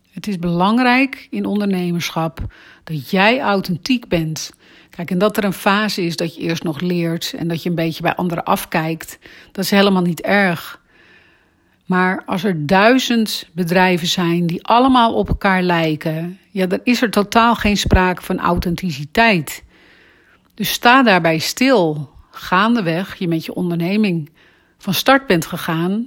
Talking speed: 155 wpm